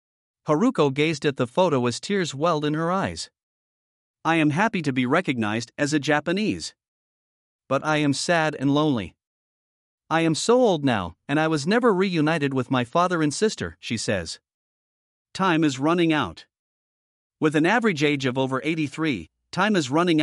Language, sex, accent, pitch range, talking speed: English, male, American, 135-180 Hz, 170 wpm